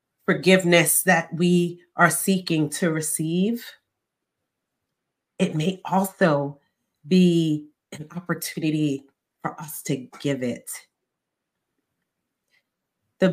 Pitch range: 145-190 Hz